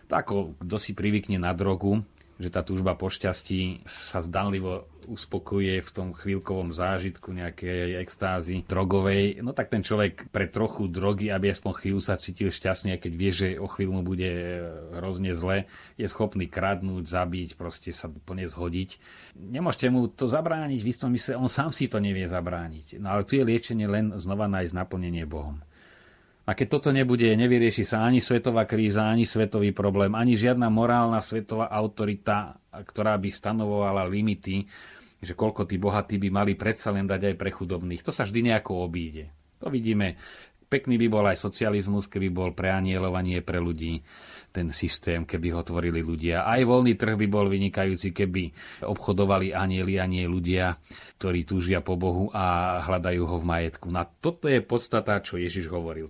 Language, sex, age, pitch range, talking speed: Slovak, male, 30-49, 90-110 Hz, 170 wpm